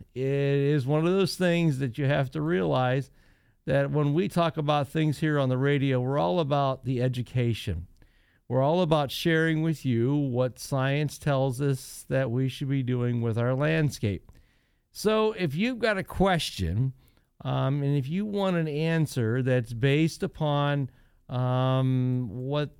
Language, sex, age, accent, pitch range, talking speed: English, male, 50-69, American, 130-170 Hz, 165 wpm